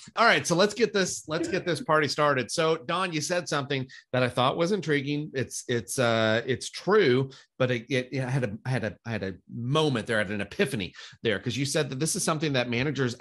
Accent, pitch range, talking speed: American, 120-155 Hz, 240 wpm